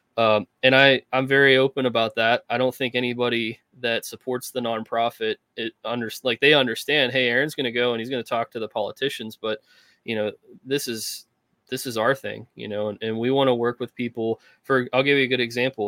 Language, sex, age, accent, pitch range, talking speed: English, male, 20-39, American, 110-125 Hz, 225 wpm